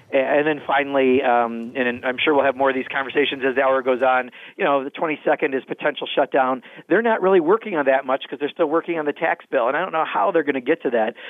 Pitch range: 130-150 Hz